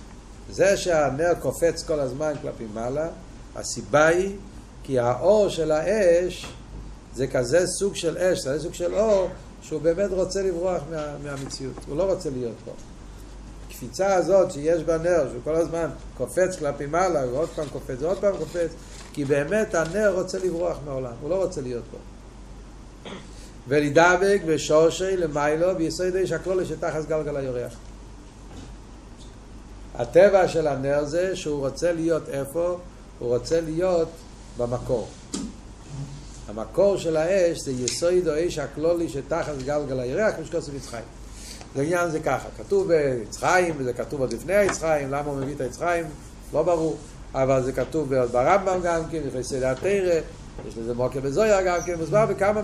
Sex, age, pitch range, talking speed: male, 50-69, 130-175 Hz, 150 wpm